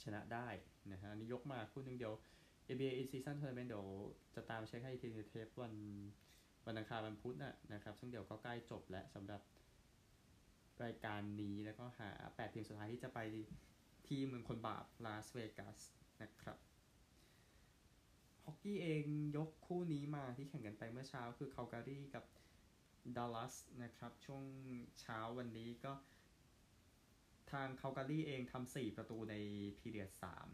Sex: male